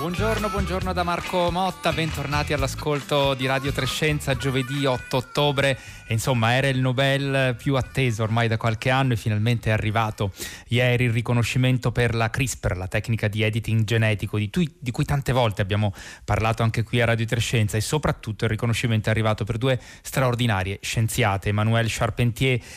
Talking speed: 170 wpm